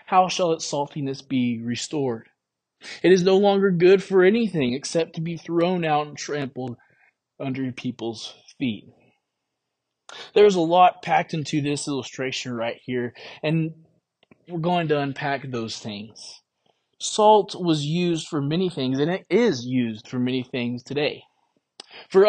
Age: 20-39